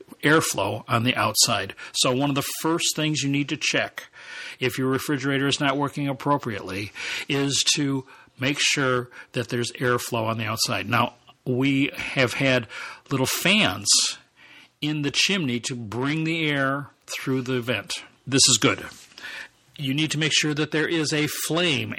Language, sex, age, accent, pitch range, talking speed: English, male, 50-69, American, 125-150 Hz, 165 wpm